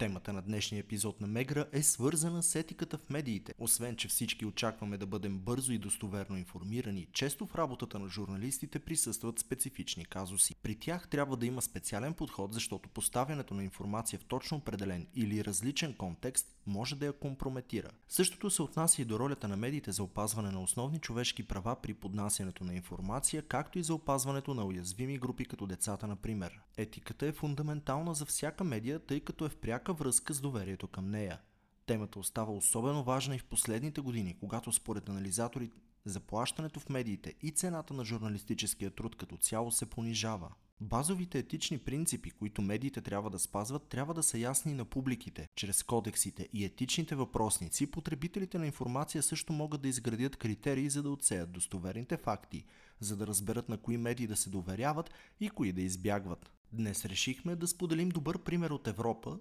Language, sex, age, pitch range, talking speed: Bulgarian, male, 30-49, 100-145 Hz, 170 wpm